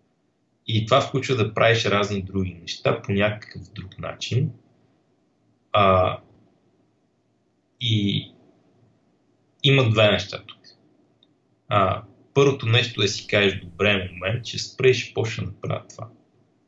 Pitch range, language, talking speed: 95-115 Hz, Bulgarian, 110 wpm